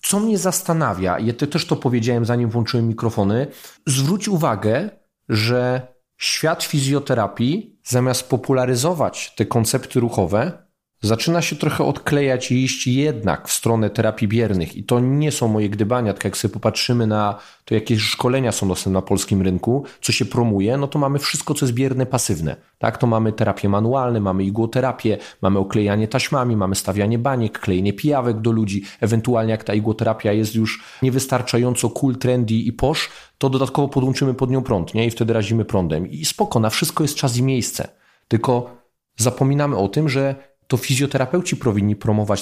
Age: 30-49